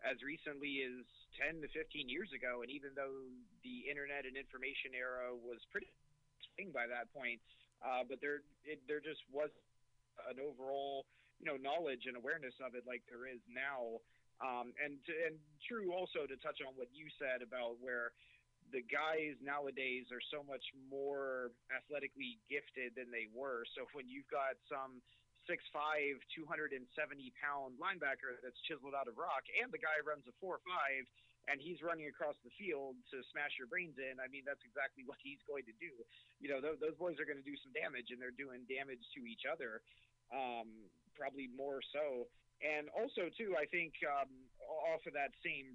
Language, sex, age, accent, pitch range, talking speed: English, male, 30-49, American, 125-150 Hz, 180 wpm